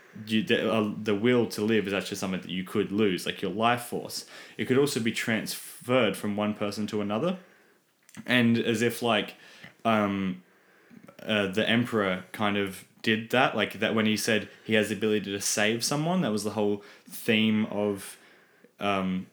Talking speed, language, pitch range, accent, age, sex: 185 wpm, English, 95-110 Hz, Australian, 10-29, male